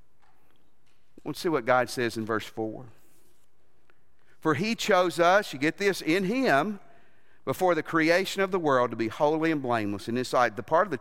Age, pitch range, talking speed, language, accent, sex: 50-69, 125-190 Hz, 185 wpm, English, American, male